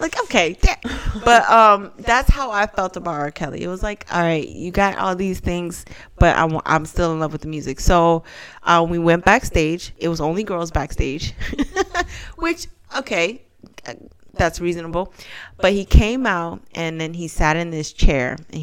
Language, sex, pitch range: English, female, 155-185 Hz